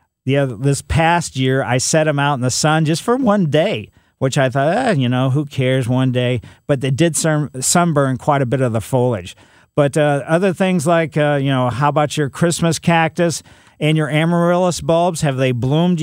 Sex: male